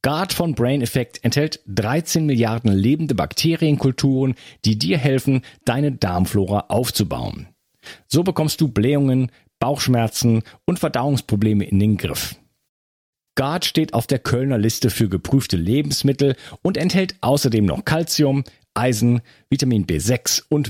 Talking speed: 125 wpm